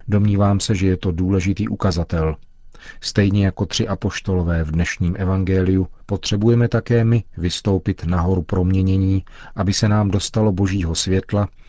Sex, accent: male, native